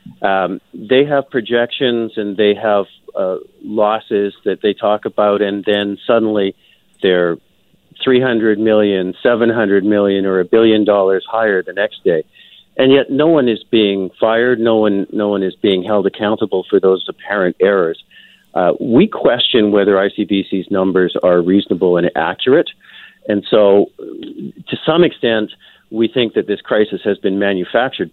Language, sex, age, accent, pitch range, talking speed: English, male, 50-69, American, 100-120 Hz, 155 wpm